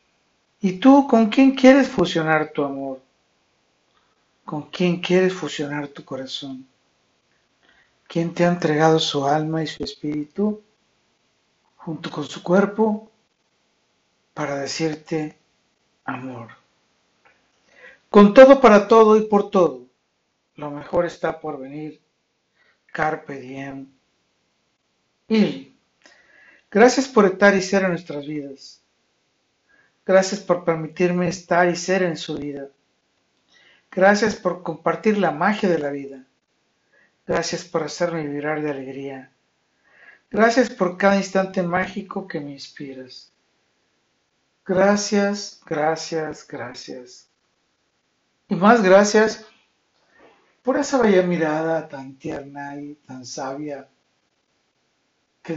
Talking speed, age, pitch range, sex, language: 110 wpm, 60-79, 145-195 Hz, male, Spanish